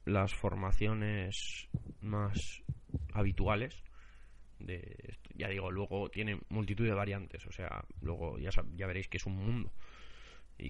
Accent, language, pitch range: Spanish, Spanish, 90-110 Hz